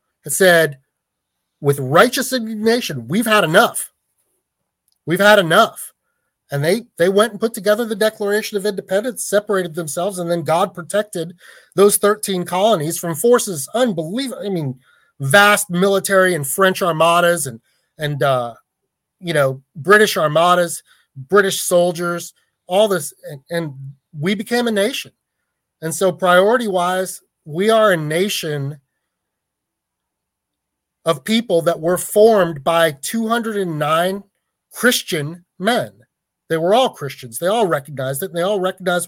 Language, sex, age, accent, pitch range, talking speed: English, male, 30-49, American, 160-205 Hz, 130 wpm